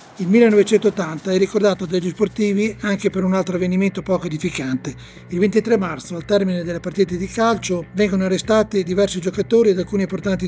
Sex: male